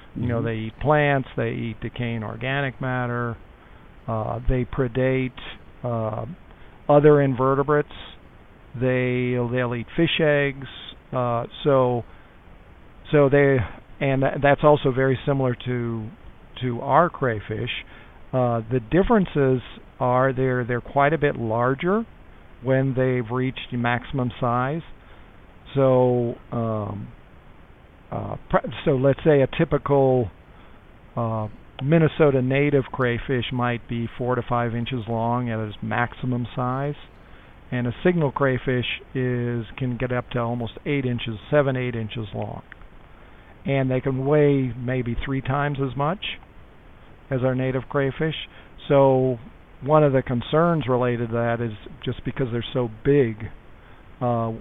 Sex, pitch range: male, 115-135 Hz